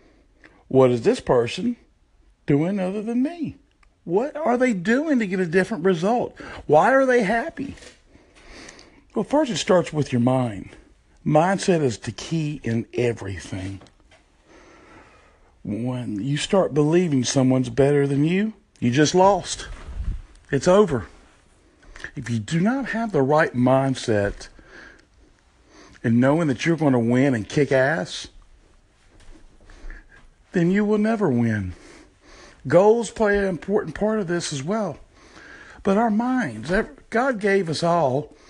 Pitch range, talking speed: 130-205 Hz, 135 wpm